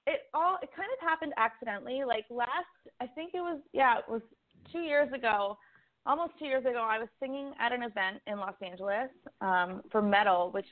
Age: 20-39